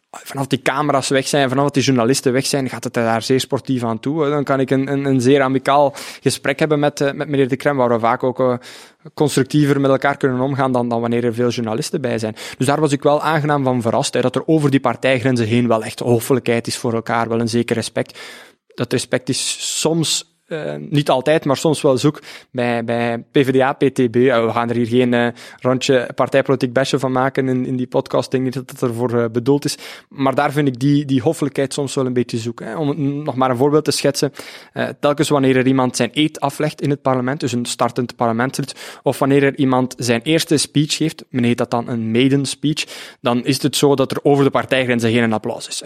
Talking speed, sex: 225 wpm, male